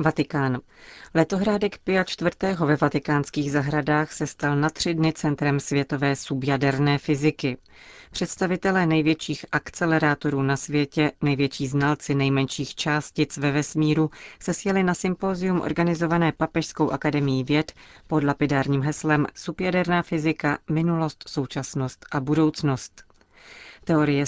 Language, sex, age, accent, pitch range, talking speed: Czech, female, 40-59, native, 140-160 Hz, 115 wpm